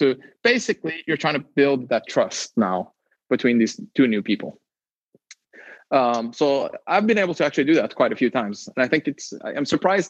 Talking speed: 195 wpm